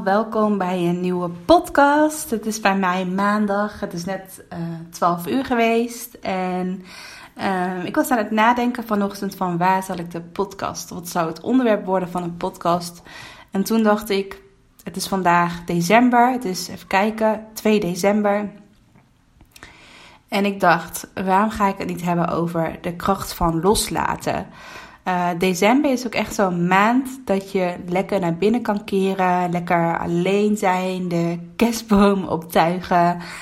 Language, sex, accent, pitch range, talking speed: Dutch, female, Dutch, 175-210 Hz, 155 wpm